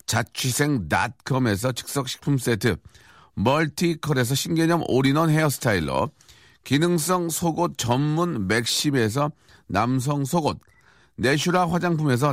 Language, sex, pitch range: Korean, male, 125-170 Hz